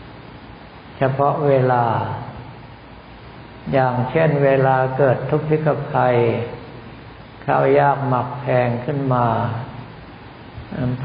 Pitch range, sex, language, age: 125-140 Hz, male, Thai, 60-79